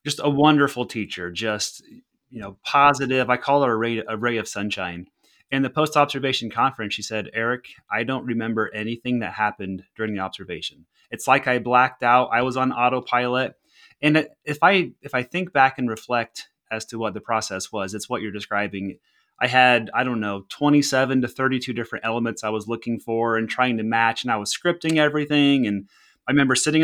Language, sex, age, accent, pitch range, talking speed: English, male, 30-49, American, 110-130 Hz, 195 wpm